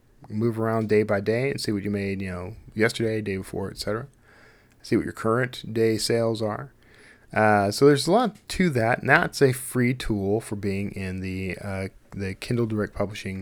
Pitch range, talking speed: 100-120 Hz, 195 wpm